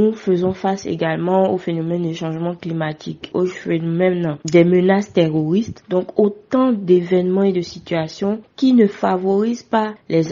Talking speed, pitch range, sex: 145 wpm, 170-200 Hz, female